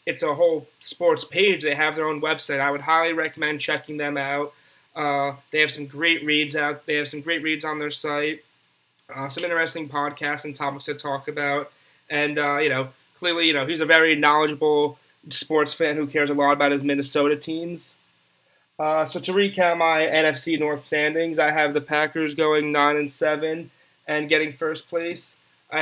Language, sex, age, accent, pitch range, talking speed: English, male, 20-39, American, 150-165 Hz, 195 wpm